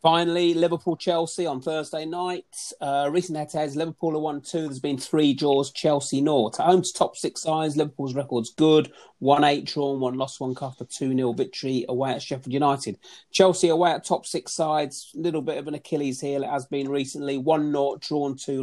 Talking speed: 210 wpm